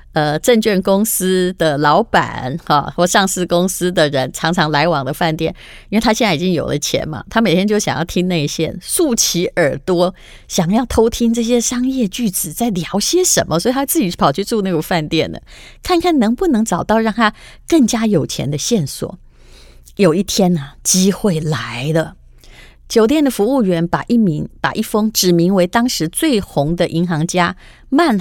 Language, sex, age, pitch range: Chinese, female, 30-49, 160-225 Hz